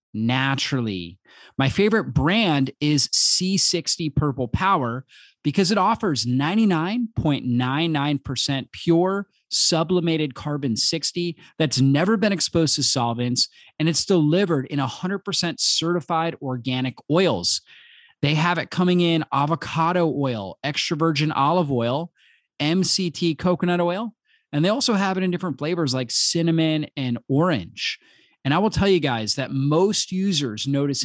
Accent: American